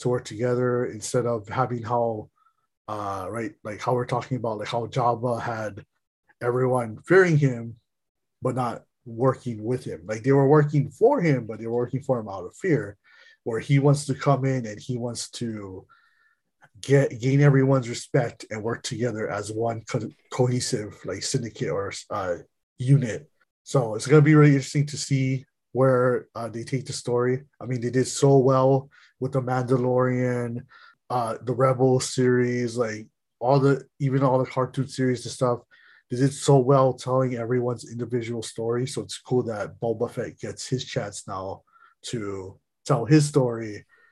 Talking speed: 175 wpm